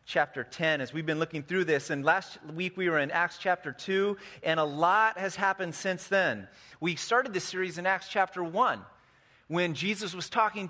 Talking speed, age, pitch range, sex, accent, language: 200 wpm, 30-49, 165-205 Hz, male, American, English